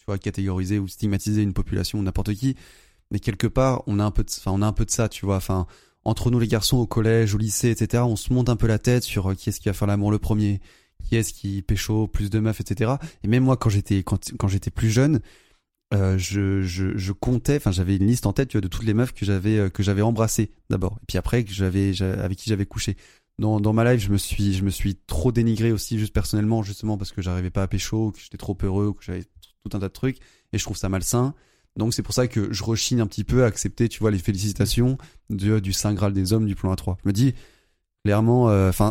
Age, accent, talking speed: 20-39, French, 270 wpm